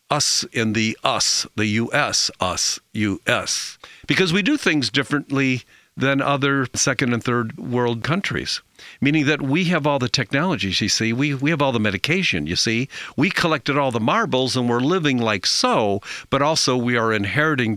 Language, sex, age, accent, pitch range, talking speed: English, male, 50-69, American, 120-155 Hz, 175 wpm